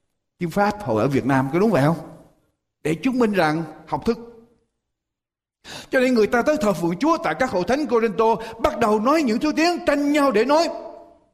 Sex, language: male, Vietnamese